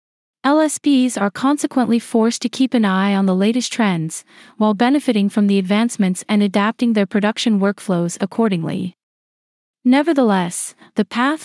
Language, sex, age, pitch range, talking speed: English, female, 30-49, 200-245 Hz, 135 wpm